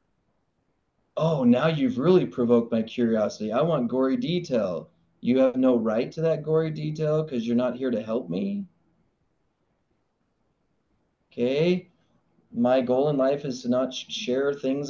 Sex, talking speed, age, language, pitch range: male, 145 wpm, 30-49, English, 125-180 Hz